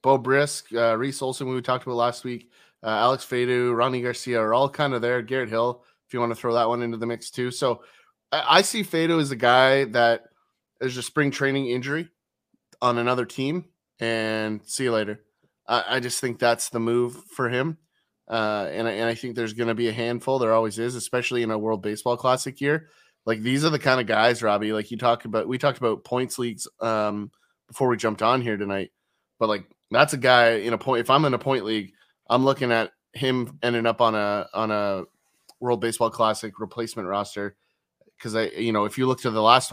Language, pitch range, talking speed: English, 110-130 Hz, 225 wpm